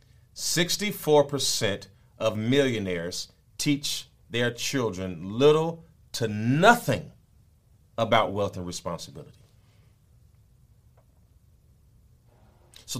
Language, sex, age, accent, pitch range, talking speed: English, male, 40-59, American, 115-145 Hz, 60 wpm